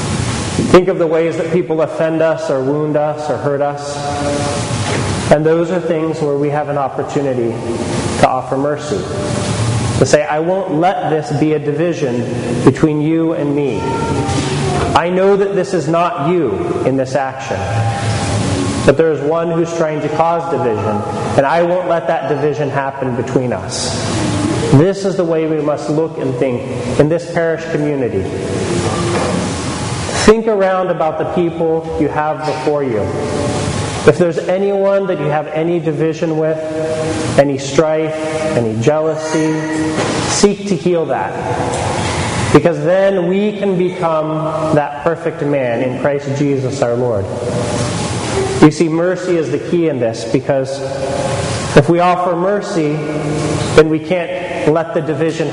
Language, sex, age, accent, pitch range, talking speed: English, male, 30-49, American, 135-165 Hz, 150 wpm